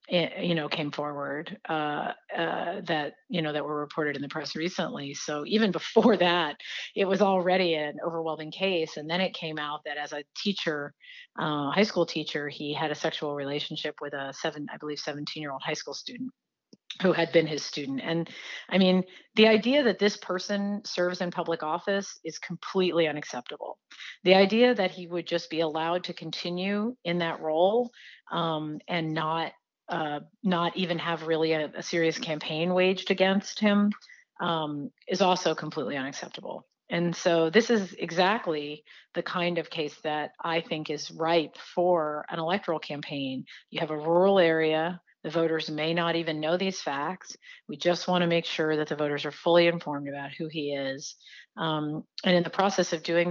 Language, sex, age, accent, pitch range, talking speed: English, female, 40-59, American, 155-185 Hz, 180 wpm